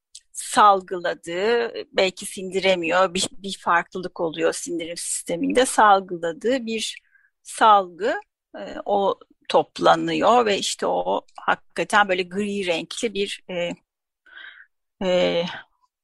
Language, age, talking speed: Turkish, 40-59, 95 wpm